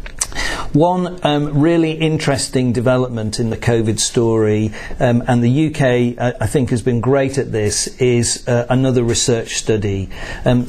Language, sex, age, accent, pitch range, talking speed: English, male, 50-69, British, 115-135 Hz, 150 wpm